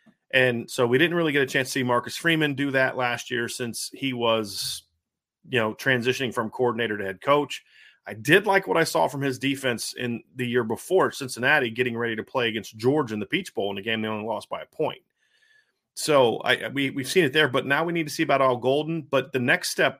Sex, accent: male, American